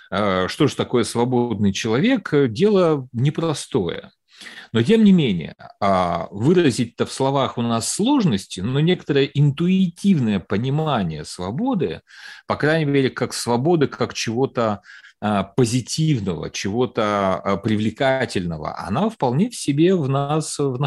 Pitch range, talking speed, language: 100-150 Hz, 110 wpm, Russian